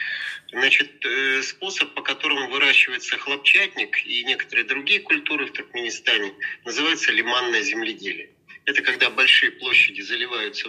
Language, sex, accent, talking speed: Russian, male, native, 110 wpm